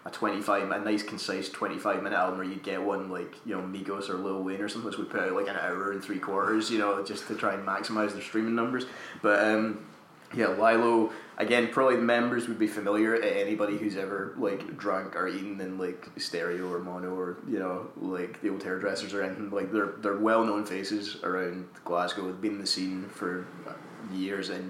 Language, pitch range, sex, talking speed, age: English, 95-110 Hz, male, 220 wpm, 20-39